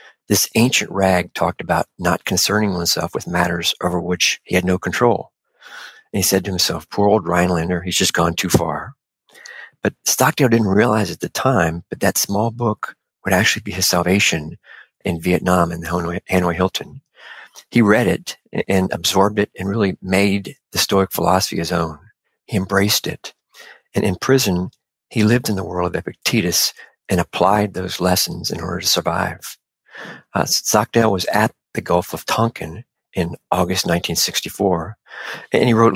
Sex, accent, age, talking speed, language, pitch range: male, American, 50-69, 165 wpm, English, 90-105 Hz